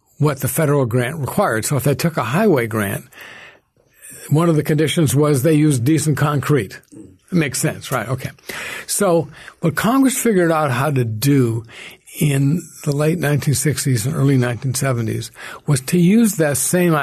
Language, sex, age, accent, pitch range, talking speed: English, male, 60-79, American, 130-165 Hz, 160 wpm